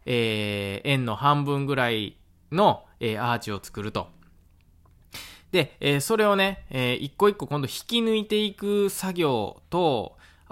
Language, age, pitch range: Japanese, 20-39, 110-150 Hz